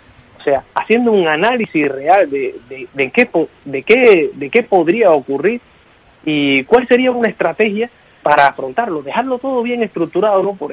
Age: 30-49